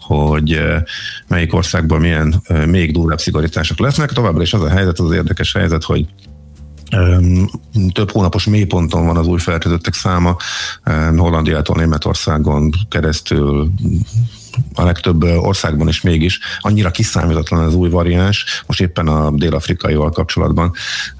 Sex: male